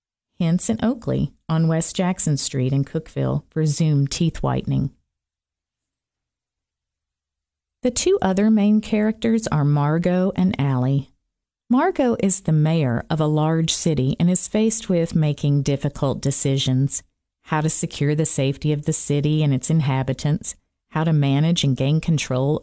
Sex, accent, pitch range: female, American, 135-175 Hz